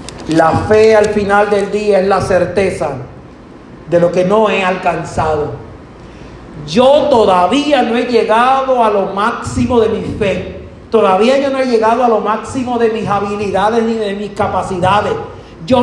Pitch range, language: 150-215 Hz, Spanish